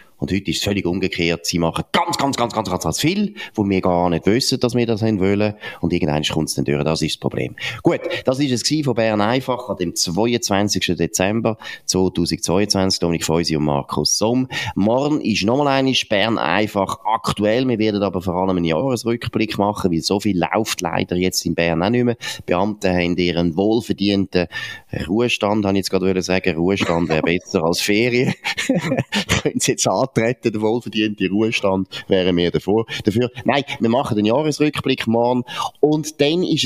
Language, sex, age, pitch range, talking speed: German, male, 30-49, 95-120 Hz, 180 wpm